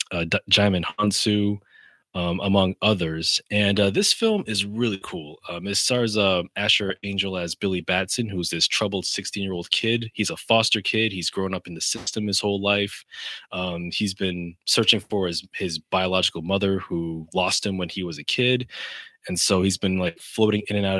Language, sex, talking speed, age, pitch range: English, male, 195 wpm, 20-39, 90-105 Hz